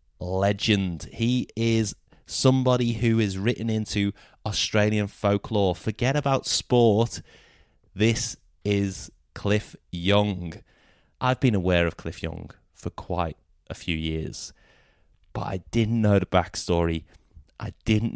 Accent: British